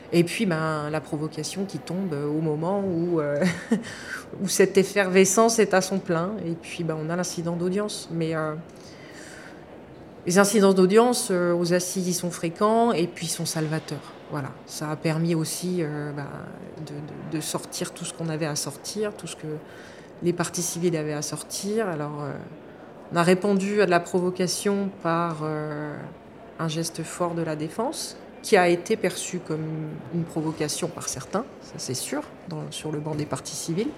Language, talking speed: French, 180 wpm